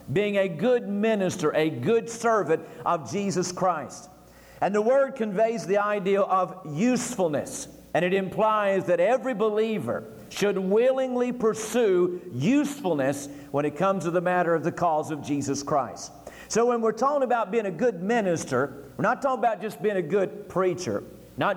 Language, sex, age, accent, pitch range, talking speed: English, male, 50-69, American, 160-220 Hz, 165 wpm